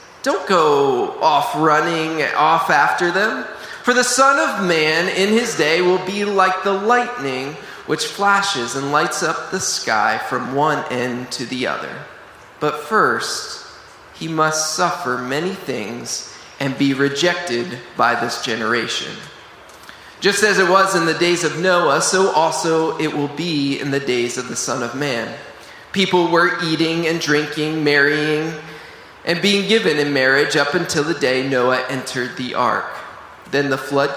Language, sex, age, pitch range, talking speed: English, male, 20-39, 130-180 Hz, 160 wpm